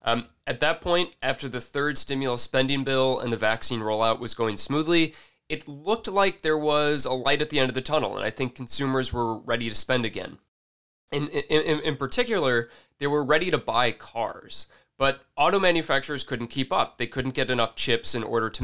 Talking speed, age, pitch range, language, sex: 205 wpm, 20-39, 115-150 Hz, English, male